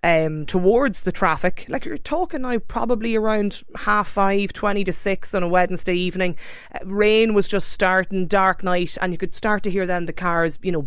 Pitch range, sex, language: 165-200 Hz, female, English